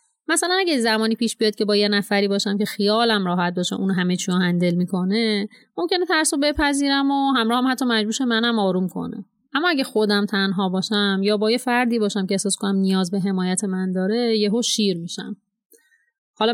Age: 30-49